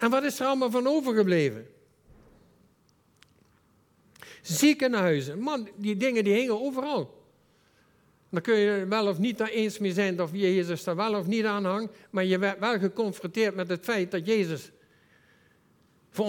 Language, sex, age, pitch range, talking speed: Dutch, male, 60-79, 175-240 Hz, 160 wpm